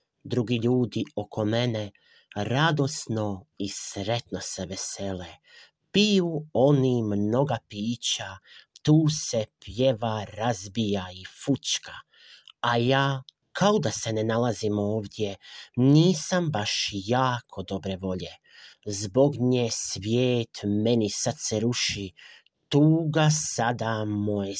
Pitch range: 100-130 Hz